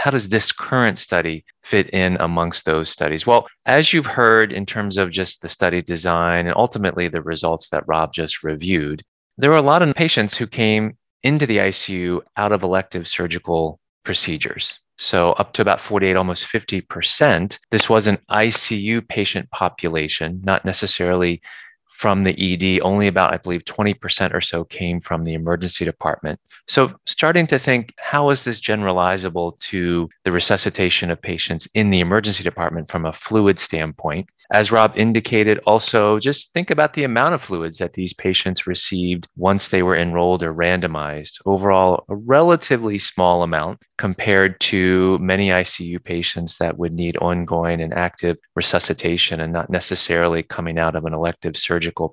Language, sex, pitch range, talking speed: English, male, 85-105 Hz, 165 wpm